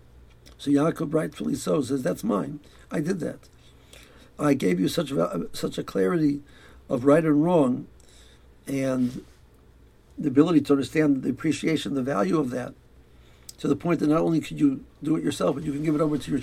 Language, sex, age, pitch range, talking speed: English, male, 60-79, 120-155 Hz, 190 wpm